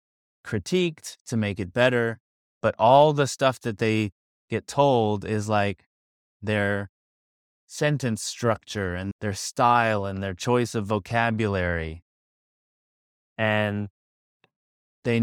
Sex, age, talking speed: male, 20-39, 110 wpm